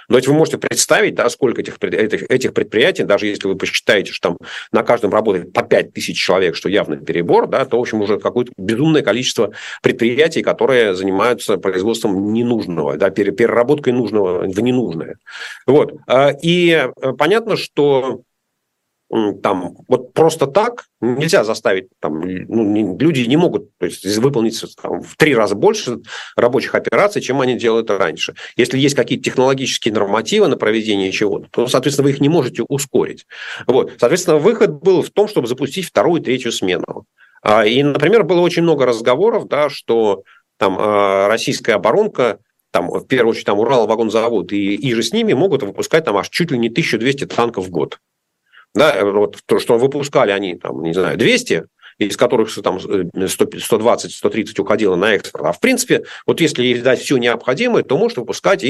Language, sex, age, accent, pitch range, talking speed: Russian, male, 40-59, native, 110-160 Hz, 170 wpm